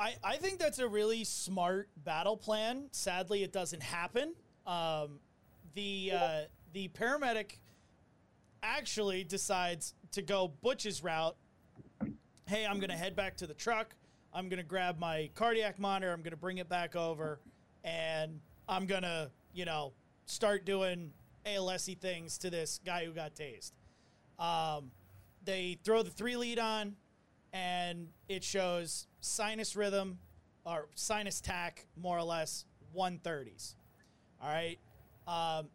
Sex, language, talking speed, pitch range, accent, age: male, English, 145 wpm, 160-200 Hz, American, 30-49